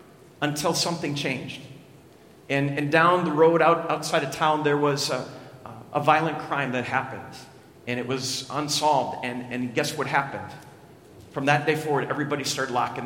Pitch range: 150-200 Hz